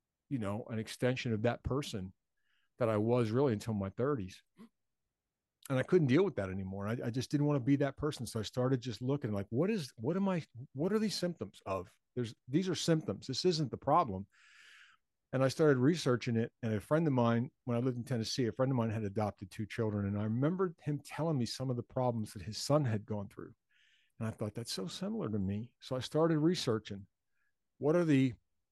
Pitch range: 105-135 Hz